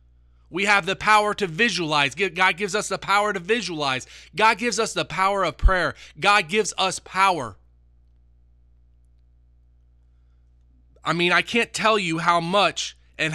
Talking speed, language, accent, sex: 150 wpm, English, American, male